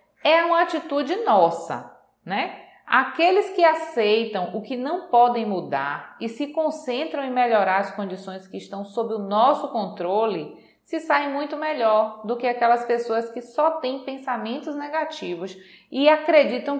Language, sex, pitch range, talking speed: Portuguese, female, 200-270 Hz, 145 wpm